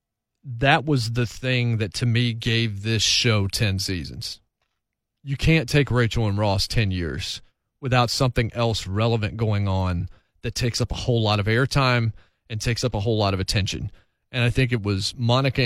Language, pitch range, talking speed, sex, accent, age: English, 105-130 Hz, 185 wpm, male, American, 40-59